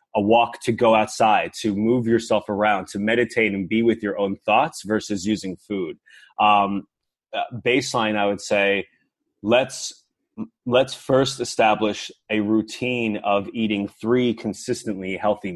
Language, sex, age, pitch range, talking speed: English, male, 20-39, 100-120 Hz, 140 wpm